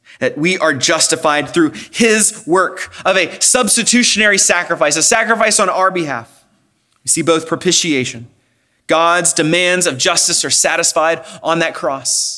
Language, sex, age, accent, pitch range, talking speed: English, male, 30-49, American, 130-210 Hz, 140 wpm